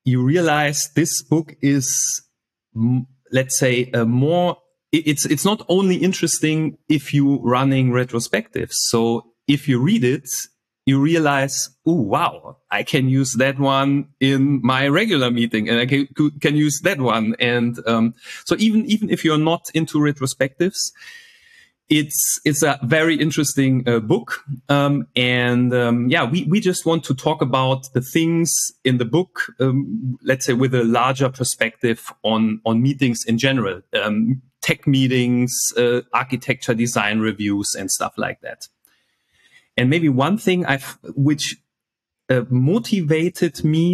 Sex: male